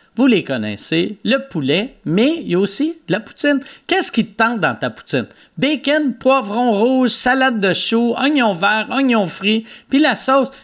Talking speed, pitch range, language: 185 wpm, 180-255 Hz, French